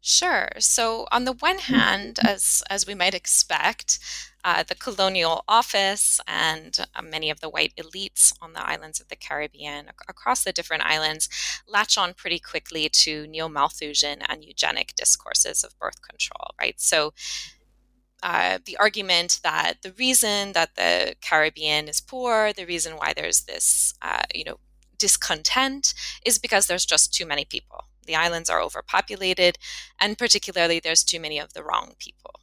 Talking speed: 160 wpm